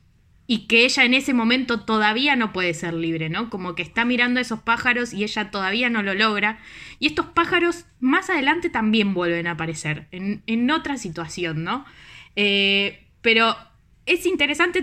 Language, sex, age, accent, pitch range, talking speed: Spanish, female, 10-29, Argentinian, 200-280 Hz, 175 wpm